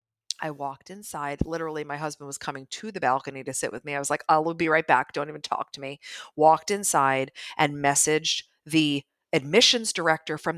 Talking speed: 200 wpm